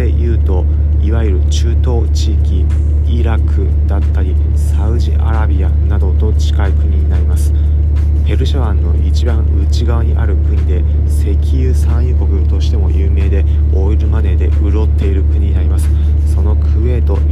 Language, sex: Japanese, male